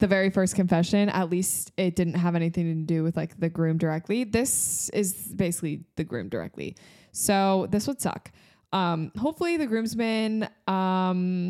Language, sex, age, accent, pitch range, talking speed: English, female, 20-39, American, 175-215 Hz, 165 wpm